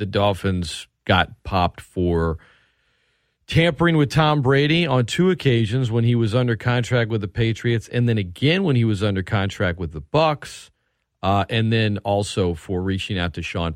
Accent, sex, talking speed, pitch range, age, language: American, male, 170 wpm, 90-115 Hz, 40-59, English